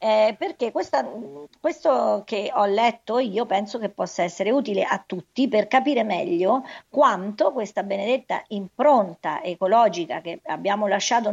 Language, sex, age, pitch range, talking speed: Italian, female, 50-69, 200-265 Hz, 130 wpm